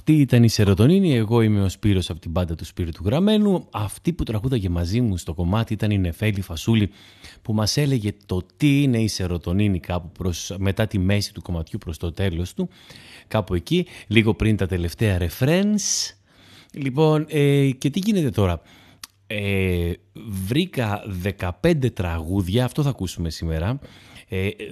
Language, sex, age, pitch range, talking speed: Greek, male, 30-49, 95-130 Hz, 165 wpm